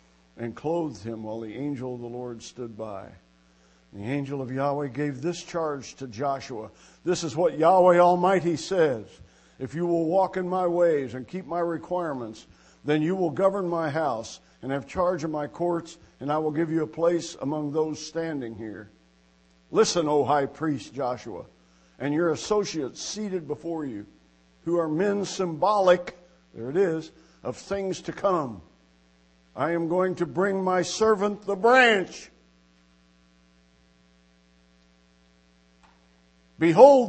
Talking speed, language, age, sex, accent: 150 wpm, English, 60-79, male, American